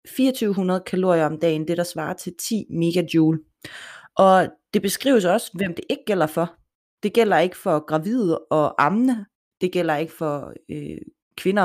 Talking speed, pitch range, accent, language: 160 wpm, 165-205 Hz, native, Danish